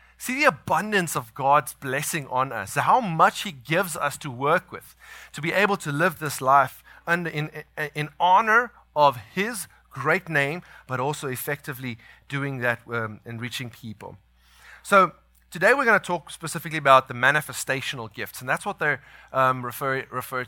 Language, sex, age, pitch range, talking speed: English, male, 30-49, 120-165 Hz, 170 wpm